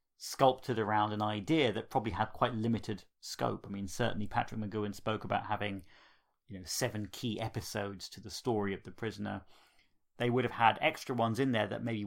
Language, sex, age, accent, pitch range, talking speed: English, male, 30-49, British, 100-120 Hz, 195 wpm